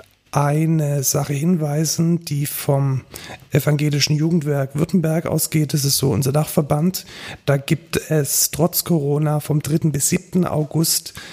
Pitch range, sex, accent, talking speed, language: 135-150 Hz, male, German, 125 wpm, German